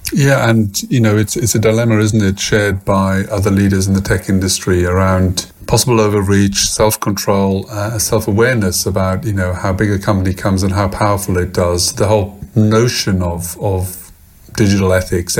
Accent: British